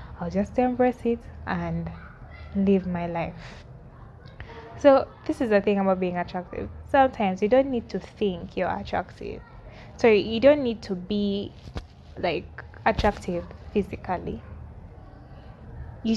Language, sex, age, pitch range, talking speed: English, female, 10-29, 175-205 Hz, 125 wpm